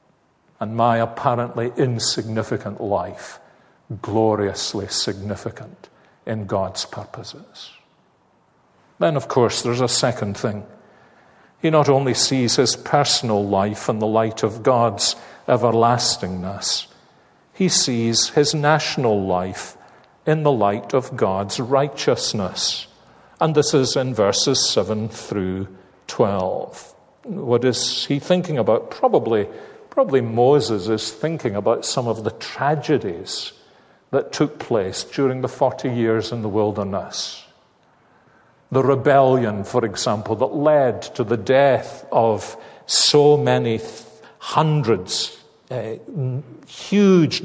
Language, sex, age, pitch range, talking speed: English, male, 50-69, 110-135 Hz, 115 wpm